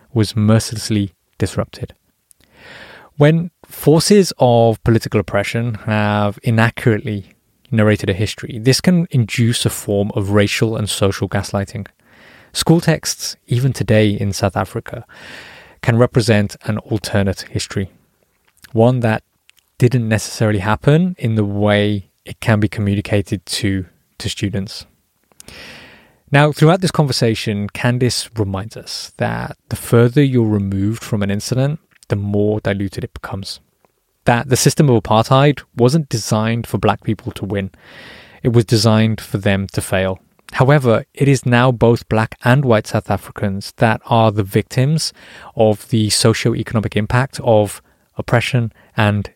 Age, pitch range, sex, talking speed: 20-39, 105-125 Hz, male, 135 wpm